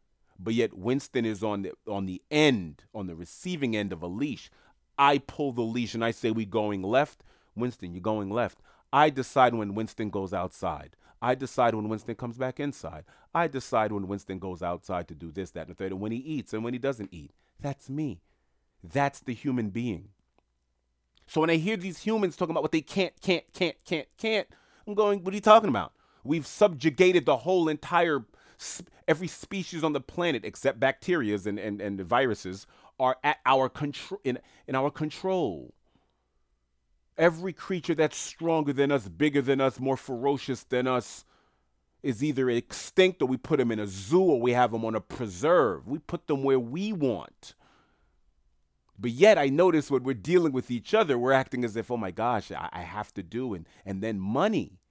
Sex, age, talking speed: male, 30-49, 200 wpm